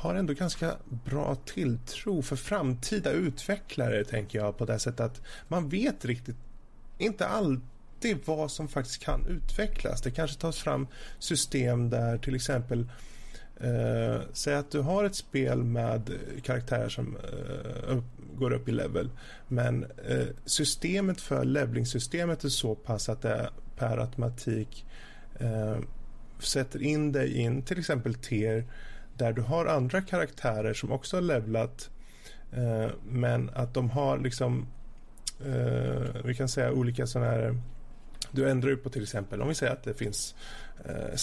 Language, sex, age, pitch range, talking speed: Swedish, male, 30-49, 115-140 Hz, 150 wpm